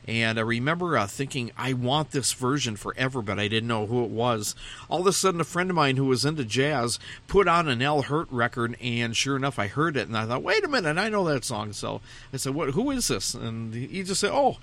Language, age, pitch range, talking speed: English, 50-69, 110-140 Hz, 260 wpm